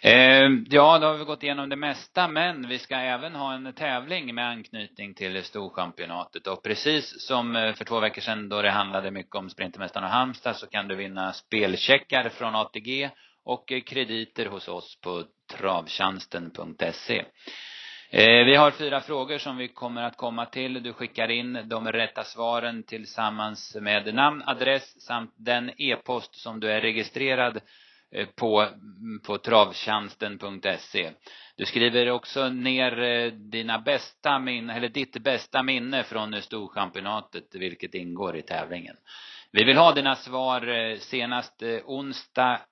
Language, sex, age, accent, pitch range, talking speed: Swedish, male, 30-49, native, 105-130 Hz, 140 wpm